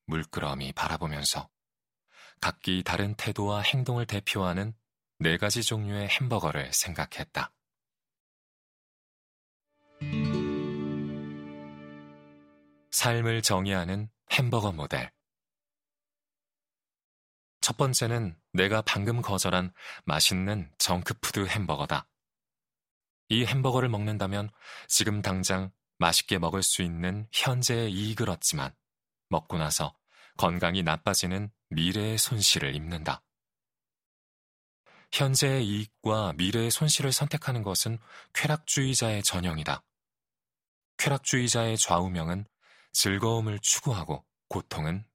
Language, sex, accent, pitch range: Korean, male, native, 85-115 Hz